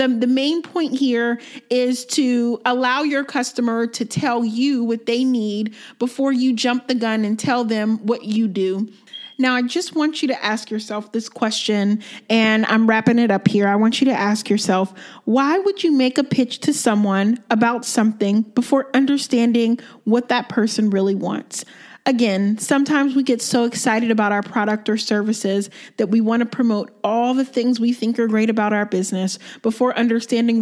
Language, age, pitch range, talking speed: English, 30-49, 215-260 Hz, 180 wpm